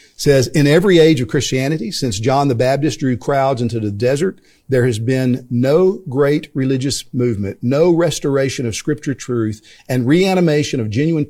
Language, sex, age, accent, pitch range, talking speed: English, male, 50-69, American, 115-145 Hz, 165 wpm